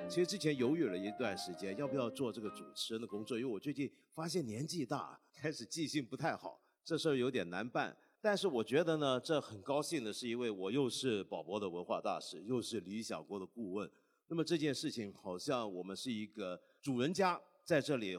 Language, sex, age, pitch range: Chinese, male, 50-69, 100-165 Hz